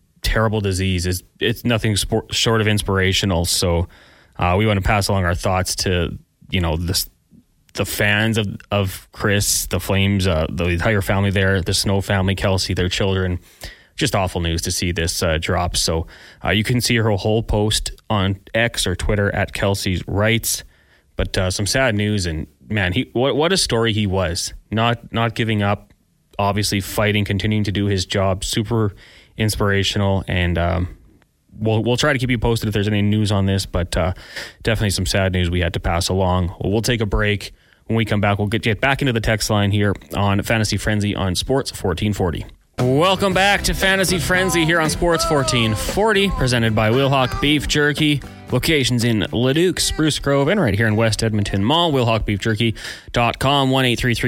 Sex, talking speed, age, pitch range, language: male, 185 wpm, 30-49, 95-115 Hz, English